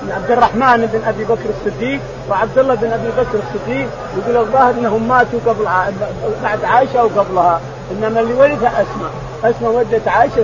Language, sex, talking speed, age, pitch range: Arabic, male, 160 wpm, 40-59, 210-245 Hz